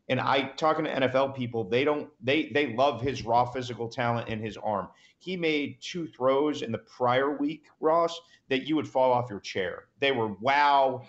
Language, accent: English, American